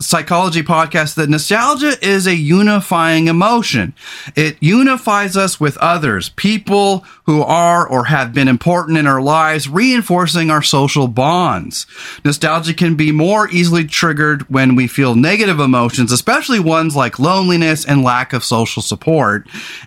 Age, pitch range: 30-49, 135-185 Hz